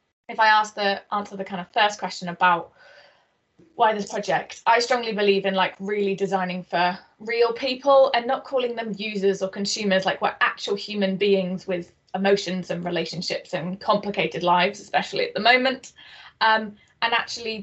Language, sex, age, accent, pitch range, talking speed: English, female, 20-39, British, 185-220 Hz, 170 wpm